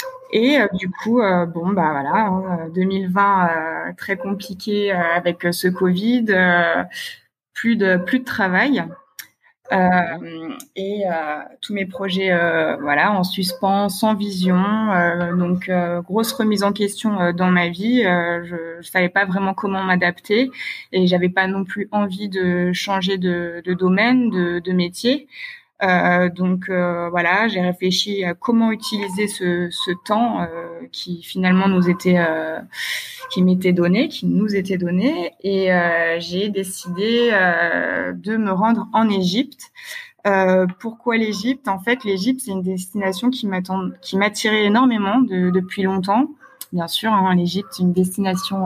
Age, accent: 20-39, French